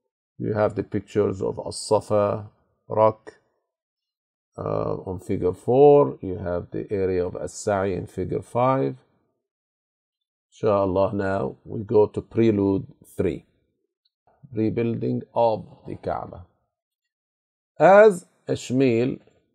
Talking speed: 100 wpm